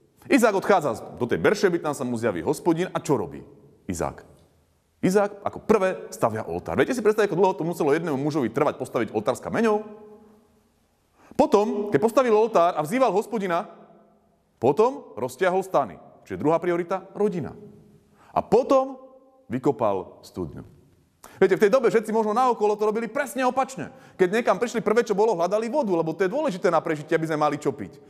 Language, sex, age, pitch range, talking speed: Slovak, male, 30-49, 175-260 Hz, 175 wpm